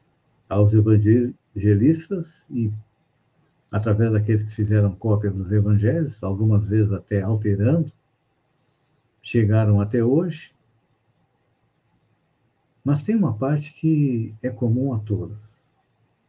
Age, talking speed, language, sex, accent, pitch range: 60-79, 95 wpm, Portuguese, male, Brazilian, 105-145 Hz